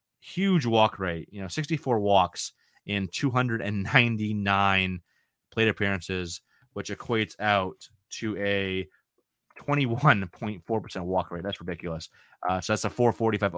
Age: 30-49